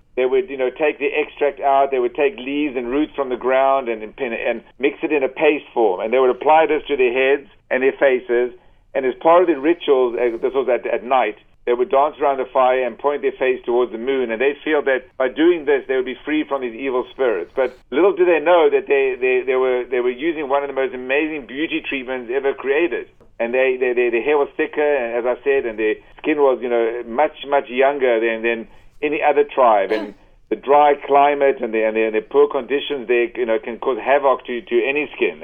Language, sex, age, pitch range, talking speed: English, male, 50-69, 125-155 Hz, 250 wpm